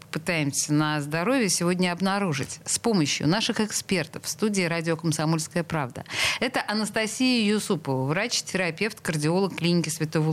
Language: Russian